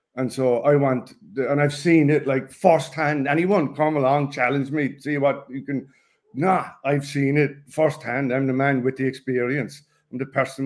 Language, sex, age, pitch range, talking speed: English, male, 50-69, 130-155 Hz, 190 wpm